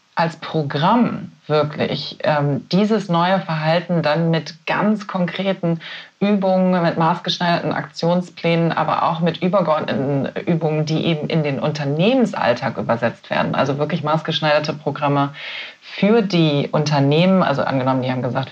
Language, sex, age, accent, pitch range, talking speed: German, female, 30-49, German, 145-170 Hz, 125 wpm